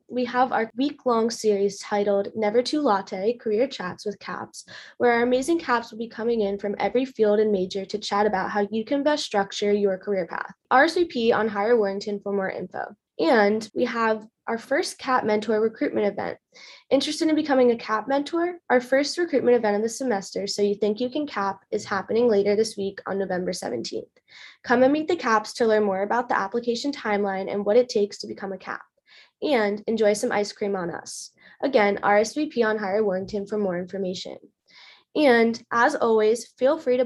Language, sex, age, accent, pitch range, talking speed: English, female, 20-39, American, 205-245 Hz, 195 wpm